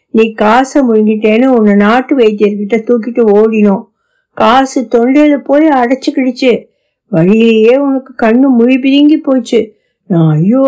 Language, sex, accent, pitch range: Tamil, female, native, 205-270 Hz